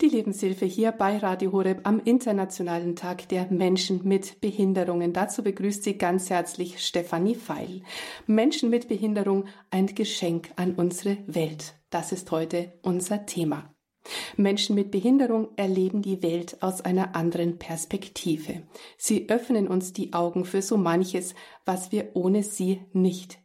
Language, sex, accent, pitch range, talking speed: German, female, German, 170-205 Hz, 145 wpm